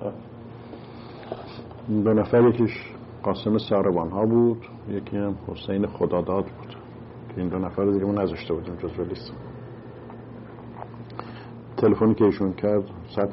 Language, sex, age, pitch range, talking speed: English, male, 50-69, 95-120 Hz, 115 wpm